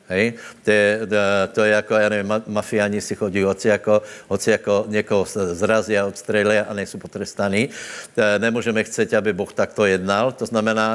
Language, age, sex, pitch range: Slovak, 60-79, male, 100-120 Hz